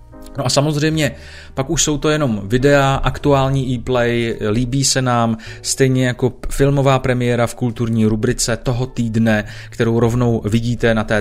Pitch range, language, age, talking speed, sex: 105-130 Hz, Czech, 30-49, 150 wpm, male